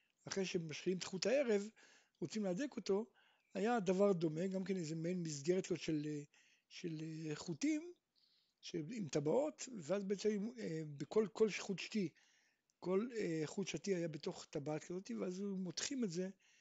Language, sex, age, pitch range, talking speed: Hebrew, male, 60-79, 165-220 Hz, 130 wpm